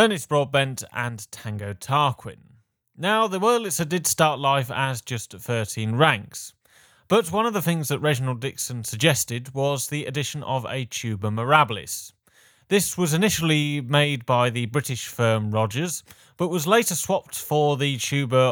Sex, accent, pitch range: male, British, 110-150 Hz